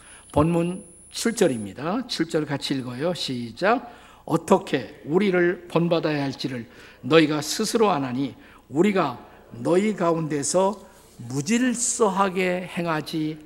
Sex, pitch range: male, 125-180 Hz